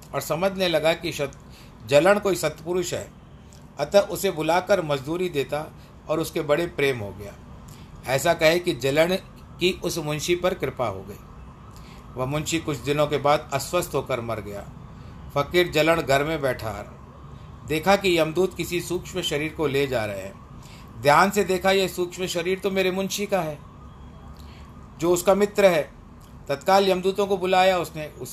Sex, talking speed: male, 165 wpm